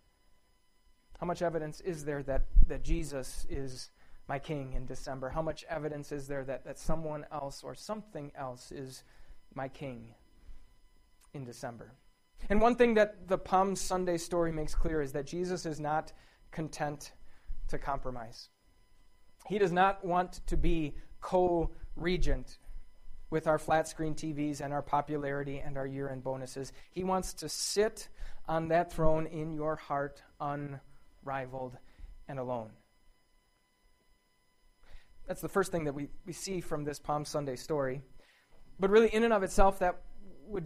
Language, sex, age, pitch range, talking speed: English, male, 30-49, 135-175 Hz, 150 wpm